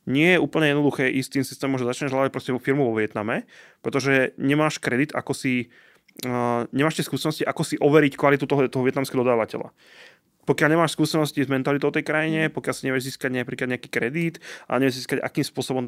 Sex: male